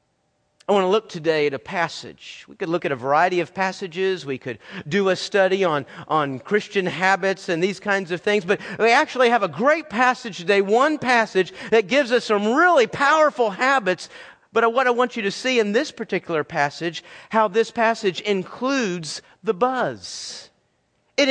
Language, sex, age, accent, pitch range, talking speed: English, male, 40-59, American, 175-225 Hz, 185 wpm